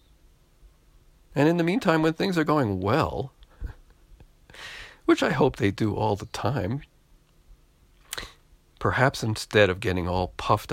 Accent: American